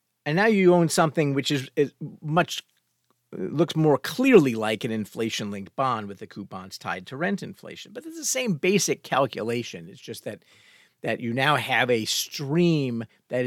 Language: English